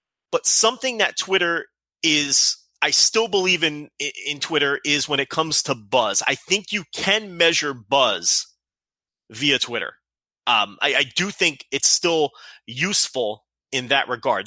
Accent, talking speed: American, 155 wpm